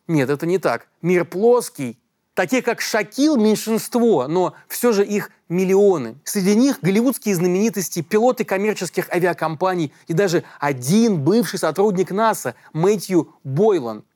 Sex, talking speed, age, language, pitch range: male, 125 wpm, 30-49, Russian, 165-210 Hz